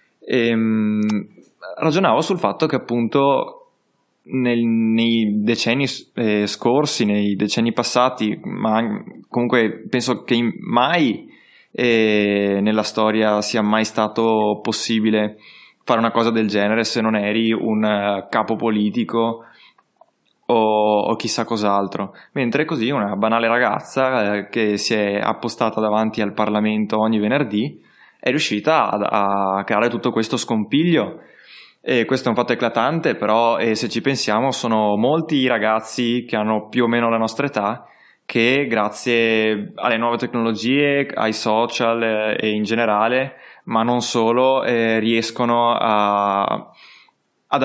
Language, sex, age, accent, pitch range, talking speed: Italian, male, 20-39, native, 105-120 Hz, 125 wpm